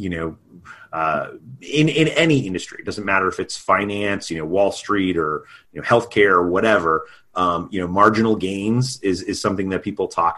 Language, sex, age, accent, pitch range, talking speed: English, male, 30-49, American, 90-115 Hz, 185 wpm